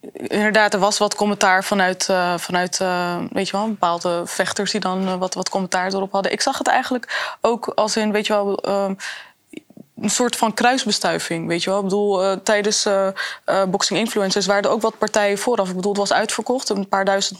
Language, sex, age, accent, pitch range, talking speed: Dutch, female, 20-39, Dutch, 195-240 Hz, 215 wpm